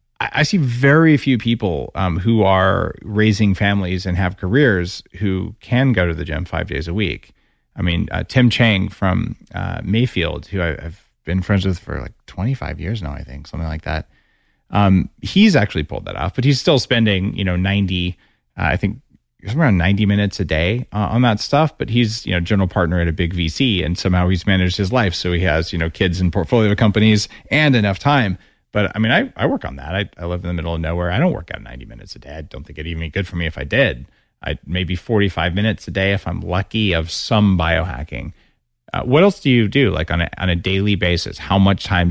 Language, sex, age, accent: English, male, 30-49, American